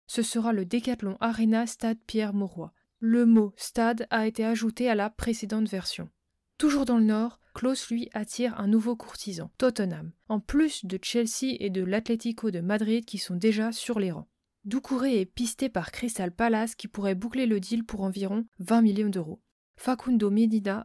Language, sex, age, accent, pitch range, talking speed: French, female, 20-39, French, 205-235 Hz, 180 wpm